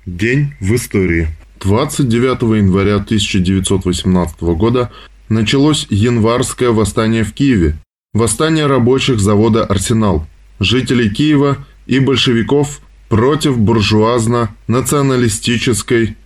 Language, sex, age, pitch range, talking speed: Russian, male, 20-39, 100-130 Hz, 80 wpm